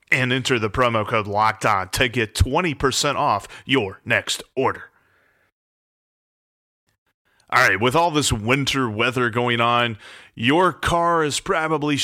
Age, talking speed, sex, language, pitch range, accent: 30-49, 130 wpm, male, English, 115-160 Hz, American